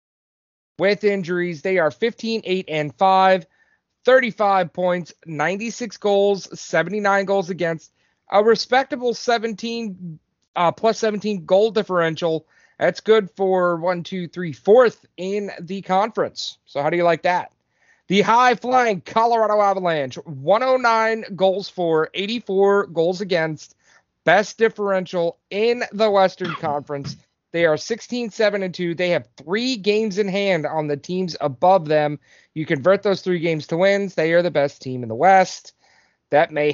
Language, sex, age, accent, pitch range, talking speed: English, male, 30-49, American, 165-205 Hz, 140 wpm